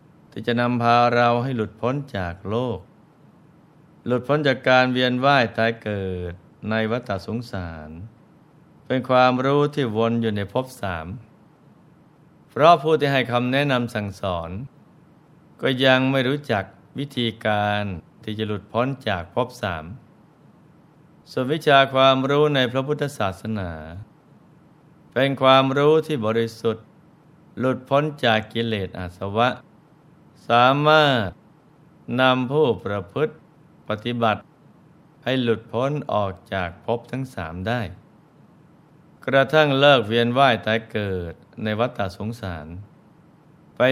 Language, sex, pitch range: Thai, male, 105-130 Hz